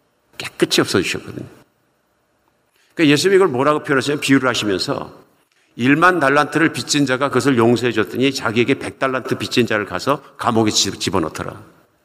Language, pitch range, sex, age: Korean, 105-145 Hz, male, 50-69